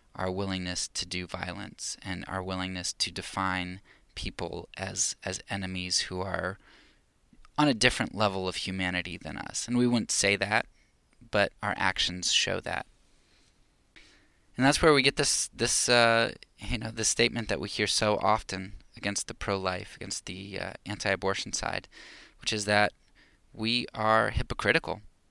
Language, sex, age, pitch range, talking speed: English, male, 20-39, 95-110 Hz, 160 wpm